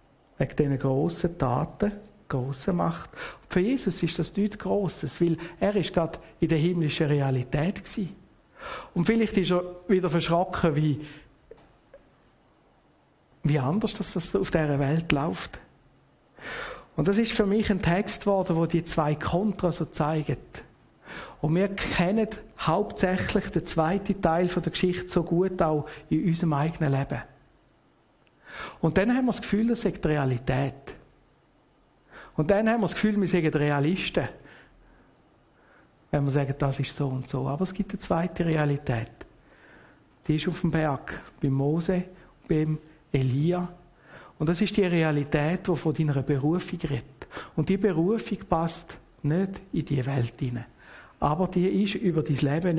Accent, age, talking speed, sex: Austrian, 60-79, 150 wpm, male